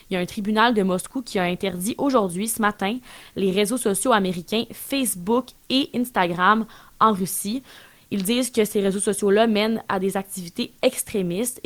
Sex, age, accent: female, 20-39, Canadian